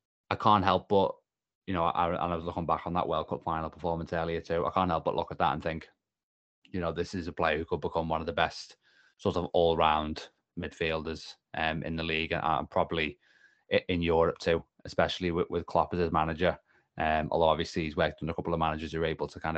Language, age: English, 20-39